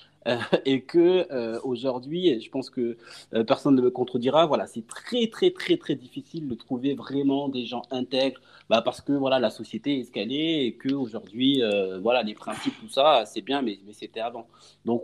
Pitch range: 115-160 Hz